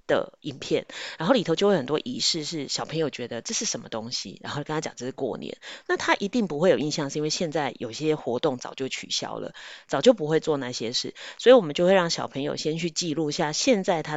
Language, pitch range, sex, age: Chinese, 145-210 Hz, female, 30-49